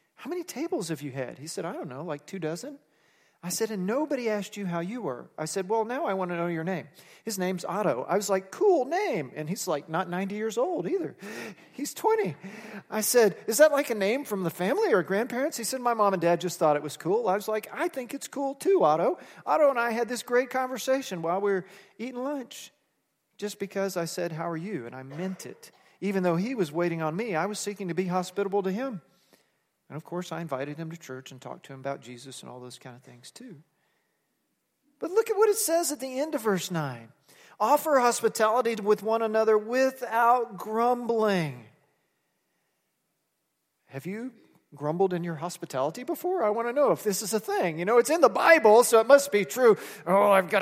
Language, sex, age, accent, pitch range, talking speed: English, male, 40-59, American, 175-235 Hz, 225 wpm